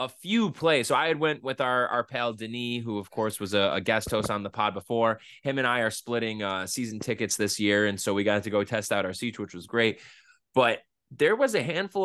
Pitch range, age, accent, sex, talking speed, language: 110-145 Hz, 20-39, American, male, 260 wpm, English